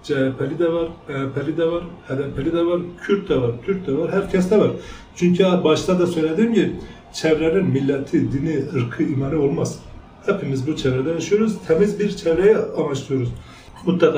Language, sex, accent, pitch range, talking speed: Turkish, male, native, 145-185 Hz, 155 wpm